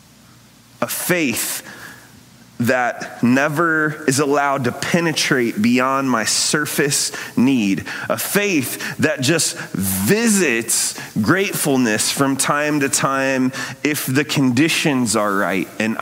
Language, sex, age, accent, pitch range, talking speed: English, male, 30-49, American, 130-170 Hz, 105 wpm